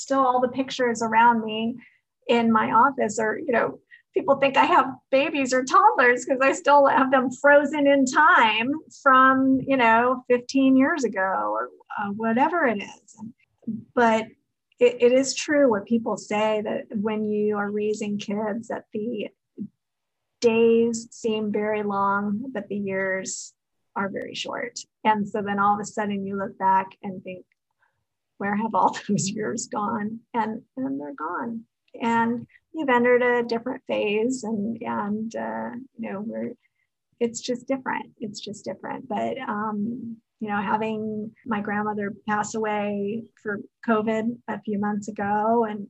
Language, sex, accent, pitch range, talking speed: English, female, American, 210-250 Hz, 155 wpm